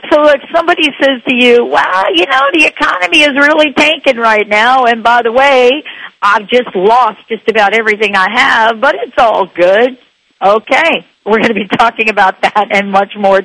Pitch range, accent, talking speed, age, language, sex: 195-265 Hz, American, 190 wpm, 50-69, English, female